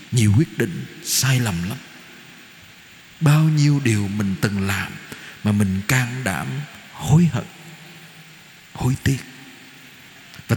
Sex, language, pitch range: male, Vietnamese, 115-160 Hz